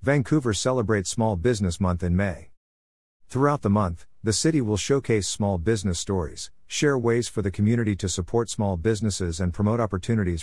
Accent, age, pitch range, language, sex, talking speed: American, 50-69, 90-110 Hz, English, male, 165 wpm